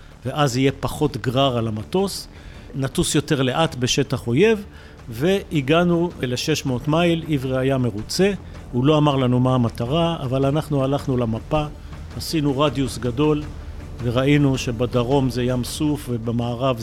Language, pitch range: Hebrew, 125-160 Hz